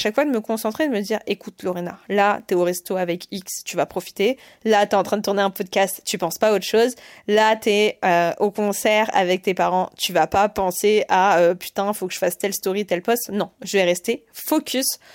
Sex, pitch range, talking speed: female, 195-235 Hz, 255 wpm